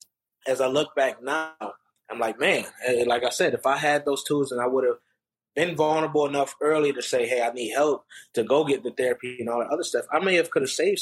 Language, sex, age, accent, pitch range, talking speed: English, male, 20-39, American, 125-180 Hz, 250 wpm